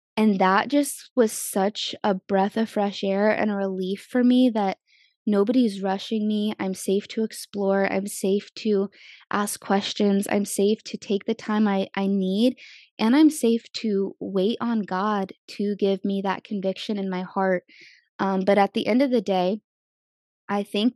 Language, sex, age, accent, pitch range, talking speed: English, female, 20-39, American, 195-220 Hz, 180 wpm